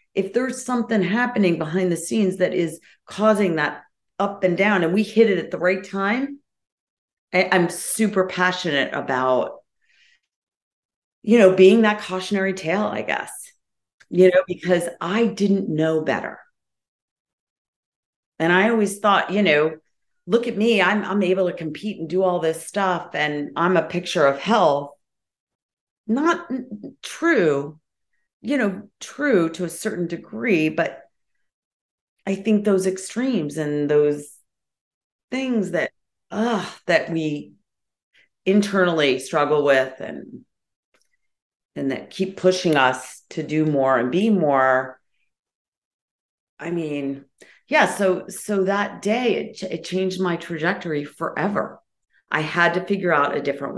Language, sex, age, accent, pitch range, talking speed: English, female, 40-59, American, 150-205 Hz, 140 wpm